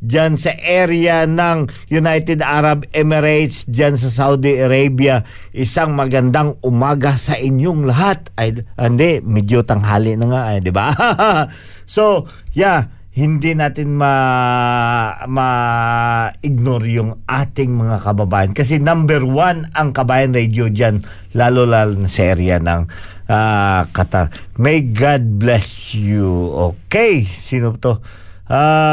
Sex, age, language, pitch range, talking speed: male, 50-69, Filipino, 110-155 Hz, 120 wpm